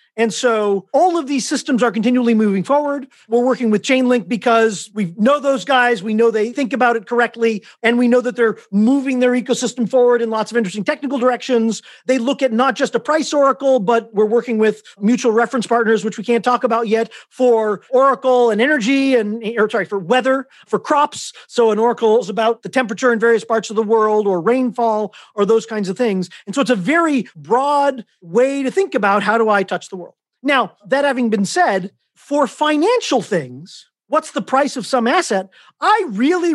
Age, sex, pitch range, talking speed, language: 40-59, male, 220-270 Hz, 205 wpm, English